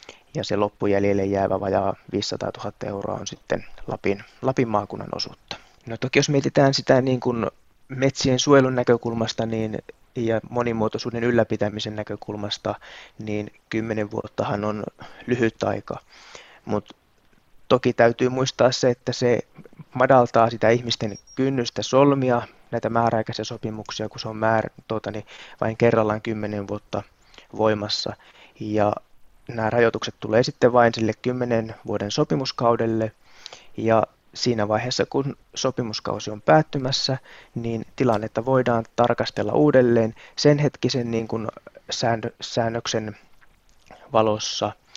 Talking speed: 120 wpm